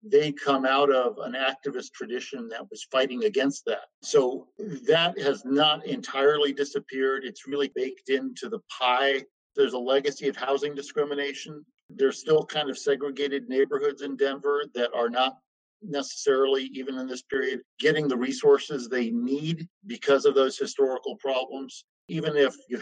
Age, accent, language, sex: 50-69, American, English, male